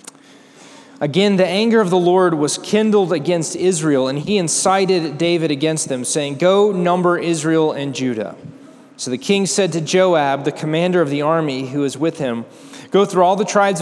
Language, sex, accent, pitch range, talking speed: English, male, American, 145-180 Hz, 180 wpm